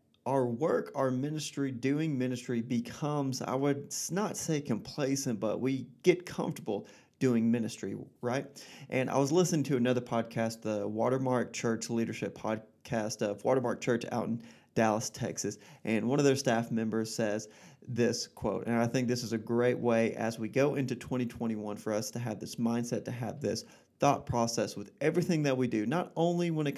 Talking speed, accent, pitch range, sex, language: 180 wpm, American, 115-135 Hz, male, English